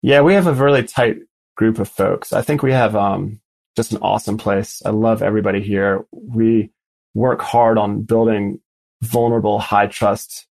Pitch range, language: 105-125 Hz, English